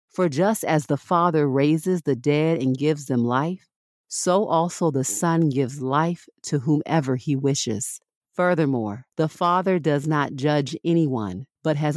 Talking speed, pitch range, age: 155 wpm, 140-170 Hz, 50-69